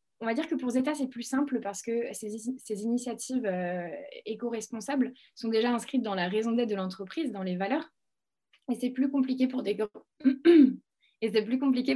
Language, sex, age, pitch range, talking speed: French, female, 20-39, 185-240 Hz, 160 wpm